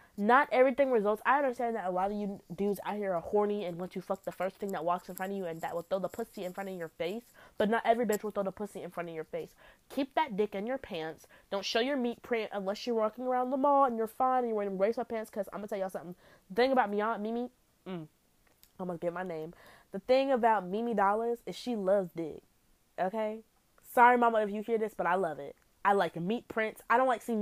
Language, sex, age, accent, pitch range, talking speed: English, female, 20-39, American, 175-230 Hz, 265 wpm